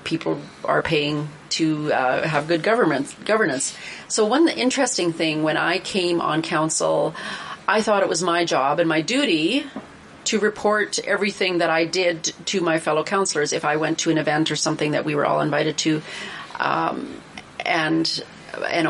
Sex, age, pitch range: female, 30-49, 165-210 Hz